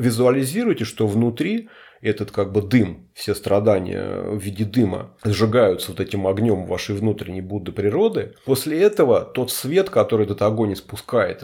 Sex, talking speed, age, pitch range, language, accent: male, 145 wpm, 30-49, 105-125 Hz, Russian, native